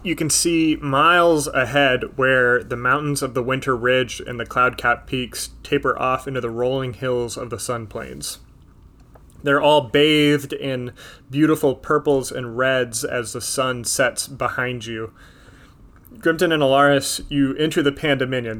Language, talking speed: English, 150 wpm